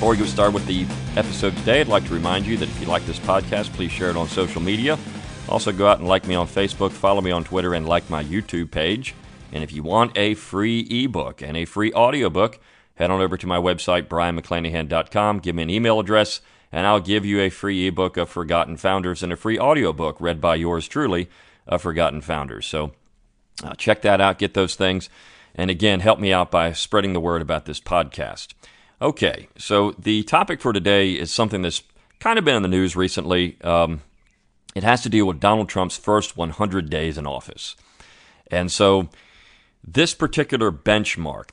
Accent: American